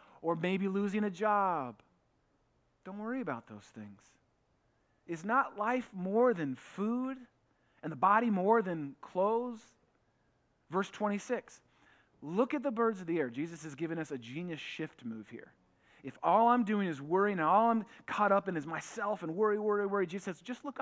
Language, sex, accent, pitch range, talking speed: English, male, American, 165-245 Hz, 175 wpm